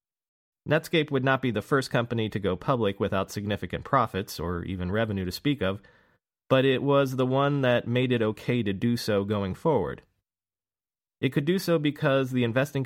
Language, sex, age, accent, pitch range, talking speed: English, male, 30-49, American, 100-125 Hz, 185 wpm